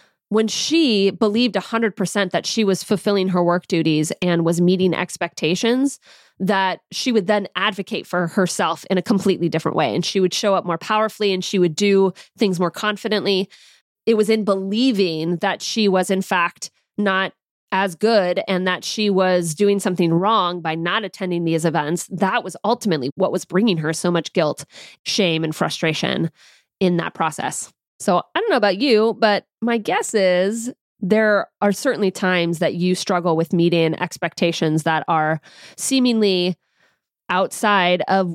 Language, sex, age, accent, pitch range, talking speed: English, female, 20-39, American, 170-210 Hz, 165 wpm